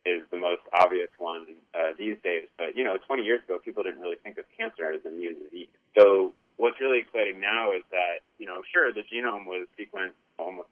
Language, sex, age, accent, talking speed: English, male, 20-39, American, 220 wpm